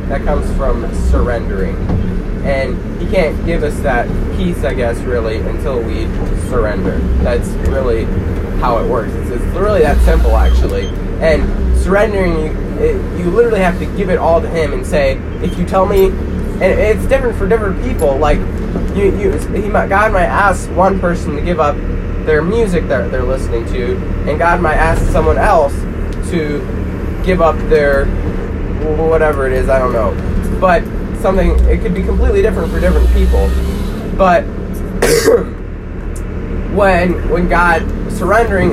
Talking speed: 155 wpm